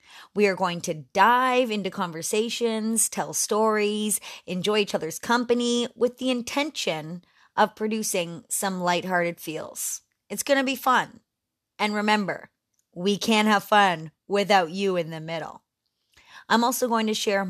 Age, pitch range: 30-49, 185-225 Hz